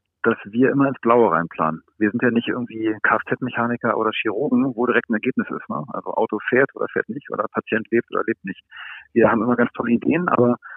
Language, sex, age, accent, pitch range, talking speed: German, male, 40-59, German, 115-140 Hz, 215 wpm